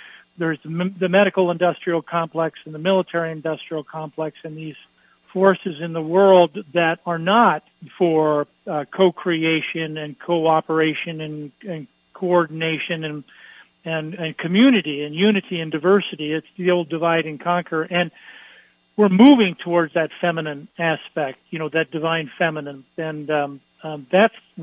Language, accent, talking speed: English, American, 140 wpm